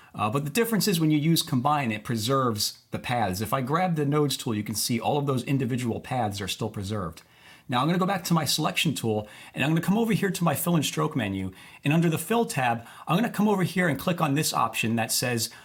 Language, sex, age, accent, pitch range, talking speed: English, male, 40-59, American, 120-170 Hz, 270 wpm